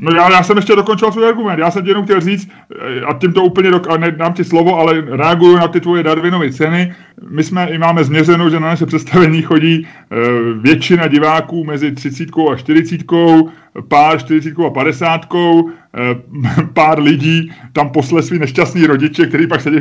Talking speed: 185 wpm